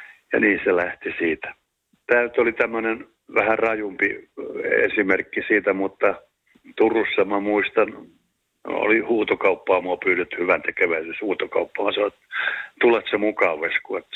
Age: 60-79